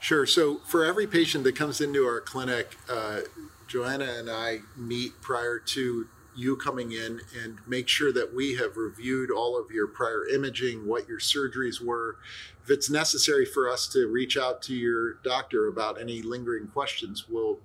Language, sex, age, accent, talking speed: English, male, 40-59, American, 175 wpm